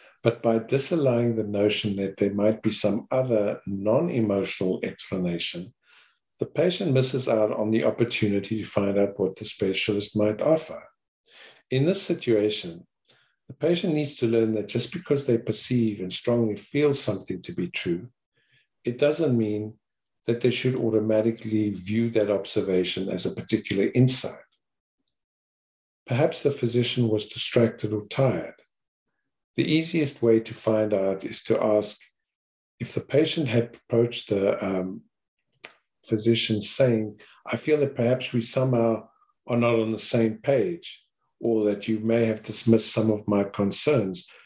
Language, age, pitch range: English, 60-79, 105-125 Hz